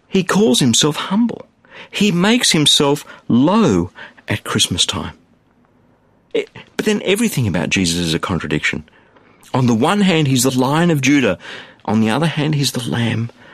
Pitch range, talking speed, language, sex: 120-165 Hz, 155 wpm, English, male